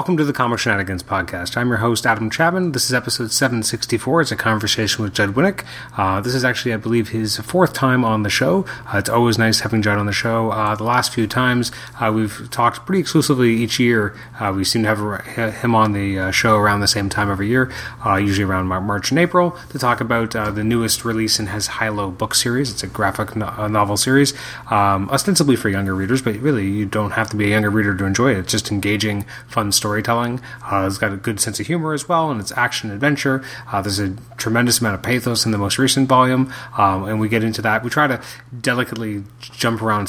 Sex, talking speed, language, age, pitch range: male, 225 wpm, English, 30-49, 105-130 Hz